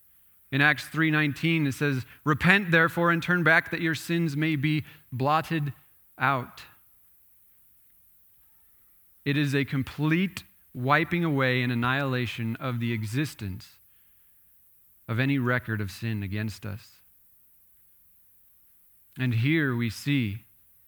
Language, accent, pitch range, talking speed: English, American, 115-145 Hz, 110 wpm